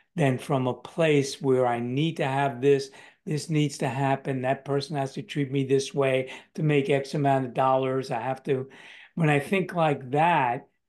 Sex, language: male, English